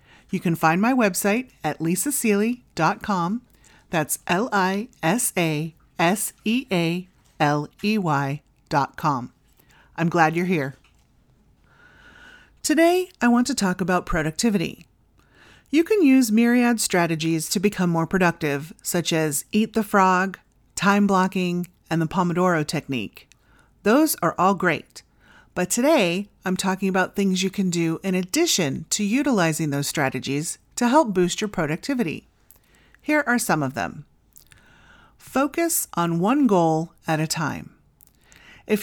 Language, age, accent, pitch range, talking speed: English, 40-59, American, 160-225 Hz, 120 wpm